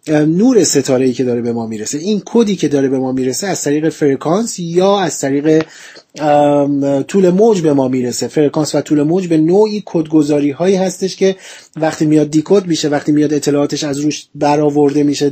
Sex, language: male, Persian